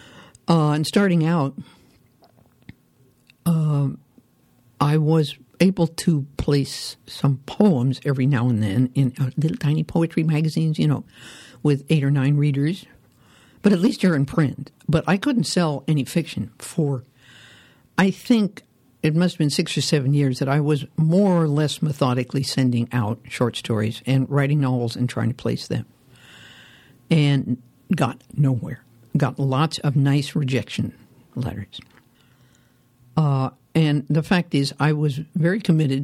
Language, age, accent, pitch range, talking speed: English, 60-79, American, 130-160 Hz, 145 wpm